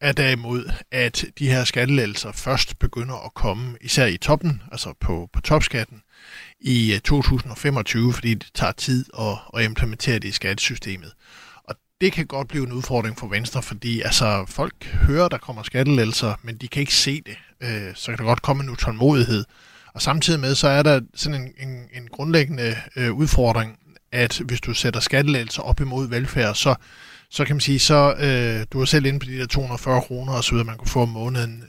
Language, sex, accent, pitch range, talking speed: Danish, male, native, 115-140 Hz, 195 wpm